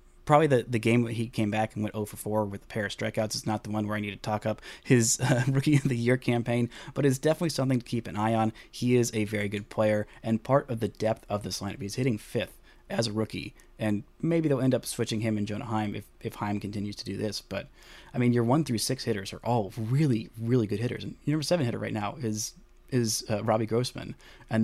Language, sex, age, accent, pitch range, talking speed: English, male, 30-49, American, 105-125 Hz, 265 wpm